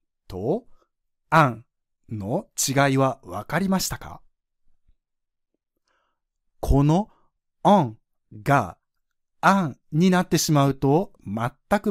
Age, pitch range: 60-79, 105-160 Hz